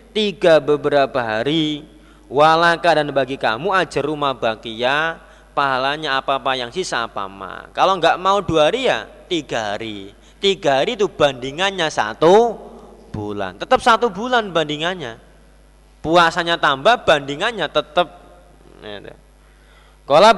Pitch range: 130-200 Hz